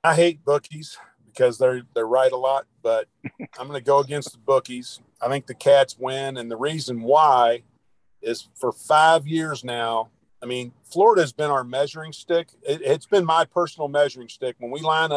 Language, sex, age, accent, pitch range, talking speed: English, male, 40-59, American, 130-160 Hz, 185 wpm